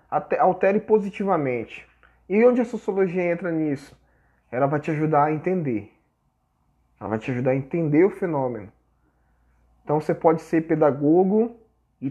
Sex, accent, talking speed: male, Brazilian, 140 wpm